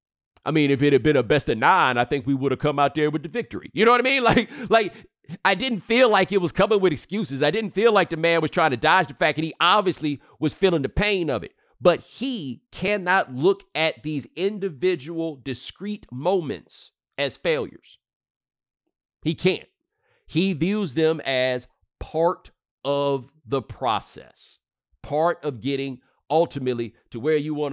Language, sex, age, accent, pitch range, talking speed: English, male, 40-59, American, 120-180 Hz, 190 wpm